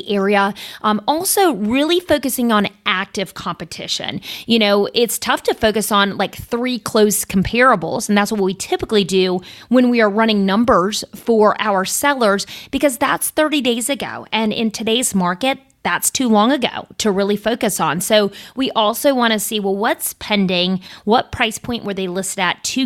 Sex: female